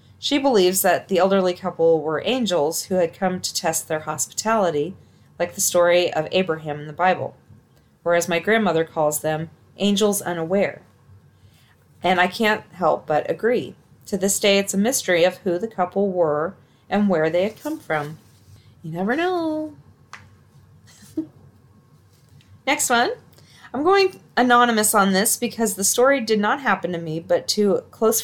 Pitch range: 165-225 Hz